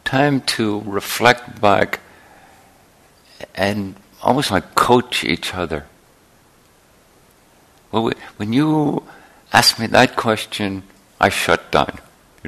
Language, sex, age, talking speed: English, male, 60-79, 95 wpm